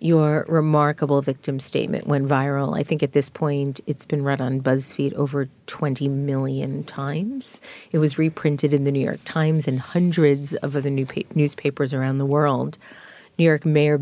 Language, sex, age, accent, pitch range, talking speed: English, female, 40-59, American, 140-160 Hz, 175 wpm